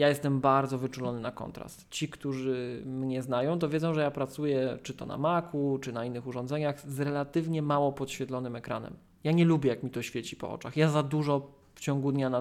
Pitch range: 130-160 Hz